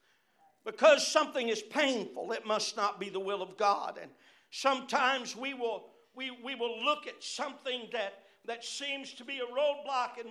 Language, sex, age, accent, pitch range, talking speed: English, male, 60-79, American, 255-325 Hz, 175 wpm